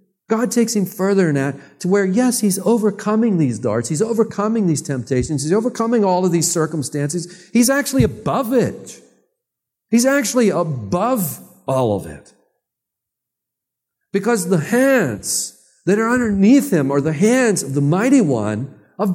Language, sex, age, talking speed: English, male, 50-69, 150 wpm